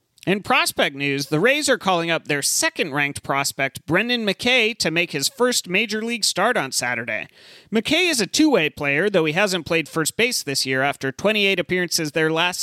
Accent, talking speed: American, 190 wpm